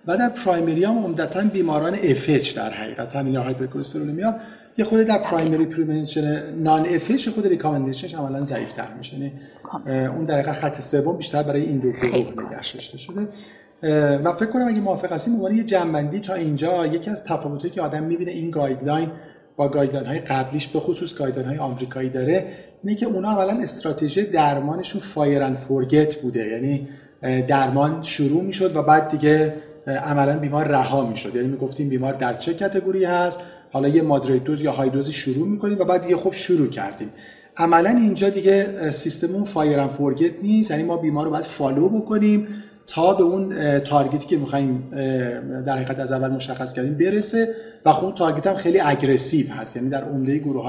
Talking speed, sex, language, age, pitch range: 170 wpm, male, Persian, 40-59, 140-180 Hz